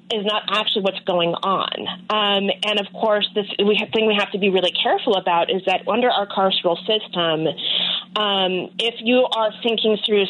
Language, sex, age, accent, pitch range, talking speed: English, female, 30-49, American, 185-215 Hz, 190 wpm